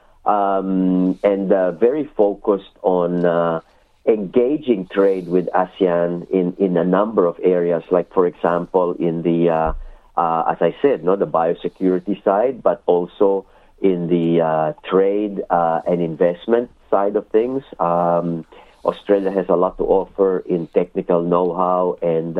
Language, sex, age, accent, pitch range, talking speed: English, male, 50-69, Filipino, 85-95 Hz, 145 wpm